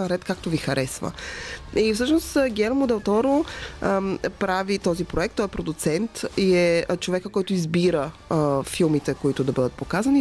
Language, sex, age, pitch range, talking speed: Bulgarian, female, 20-39, 155-200 Hz, 145 wpm